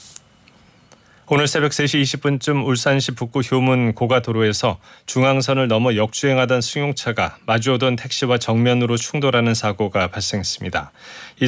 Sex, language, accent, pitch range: male, Korean, native, 110-130 Hz